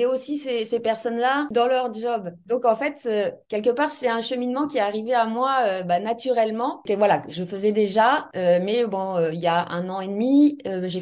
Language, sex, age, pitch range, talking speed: French, female, 30-49, 195-245 Hz, 230 wpm